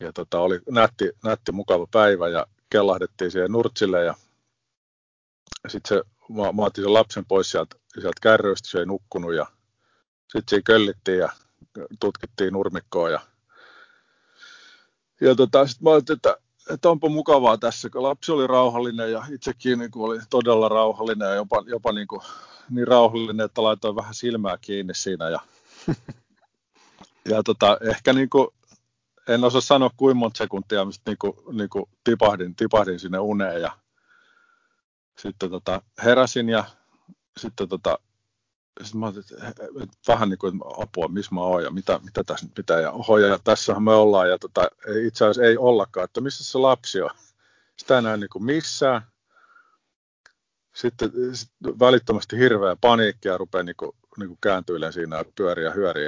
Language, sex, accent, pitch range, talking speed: Finnish, male, native, 105-135 Hz, 155 wpm